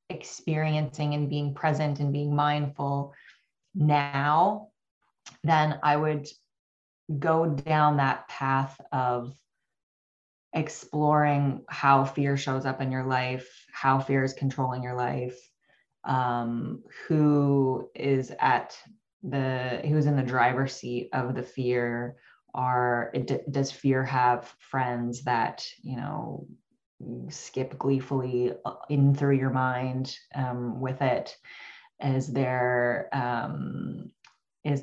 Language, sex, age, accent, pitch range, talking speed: English, female, 20-39, American, 130-145 Hz, 105 wpm